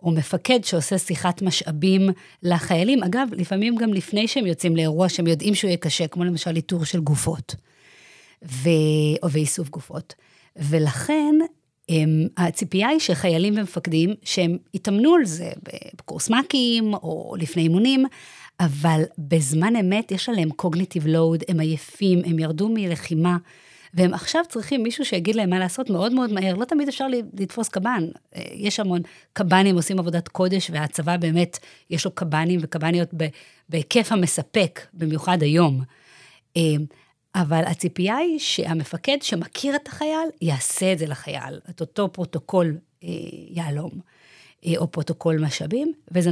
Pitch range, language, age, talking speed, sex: 165-205 Hz, Hebrew, 30-49, 135 wpm, female